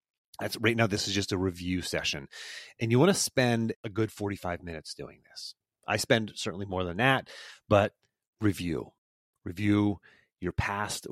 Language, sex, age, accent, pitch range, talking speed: English, male, 30-49, American, 95-125 Hz, 165 wpm